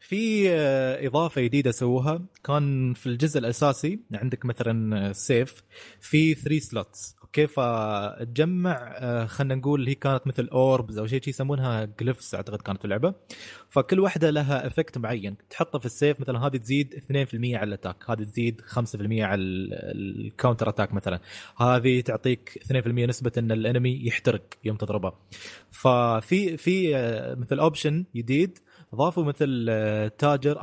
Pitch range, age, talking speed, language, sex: 110-145 Hz, 20-39, 135 wpm, Arabic, male